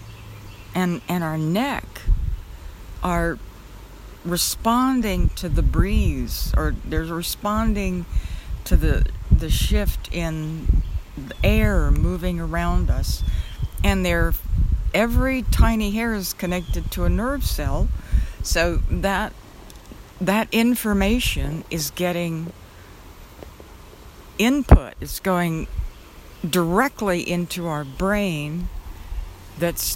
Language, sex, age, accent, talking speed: English, female, 60-79, American, 90 wpm